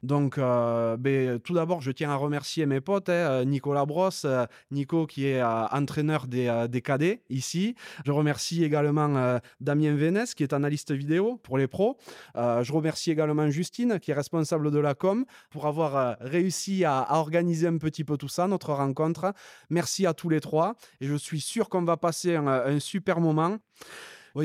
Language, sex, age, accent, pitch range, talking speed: French, male, 20-39, French, 140-180 Hz, 195 wpm